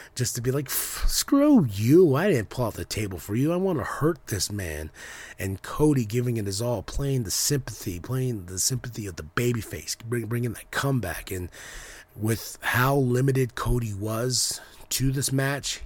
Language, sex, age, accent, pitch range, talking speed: English, male, 30-49, American, 105-130 Hz, 180 wpm